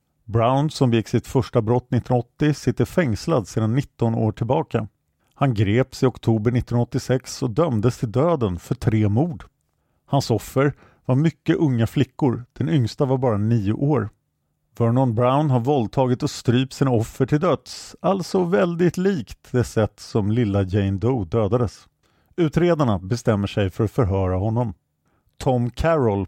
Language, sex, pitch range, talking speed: English, male, 110-140 Hz, 150 wpm